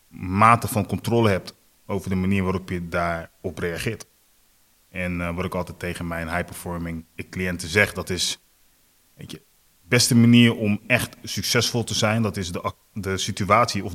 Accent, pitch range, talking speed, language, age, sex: Dutch, 90-105 Hz, 160 wpm, Dutch, 30-49, male